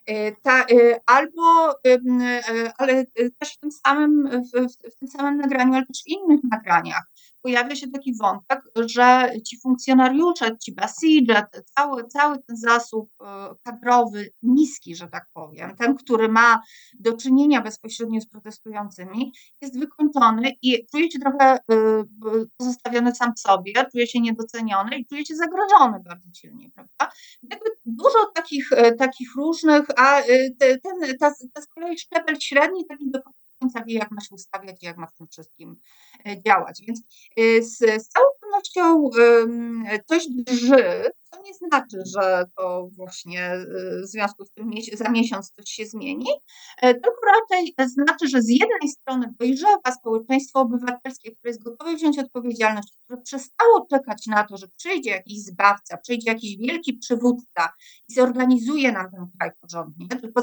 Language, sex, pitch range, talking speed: Polish, female, 220-280 Hz, 140 wpm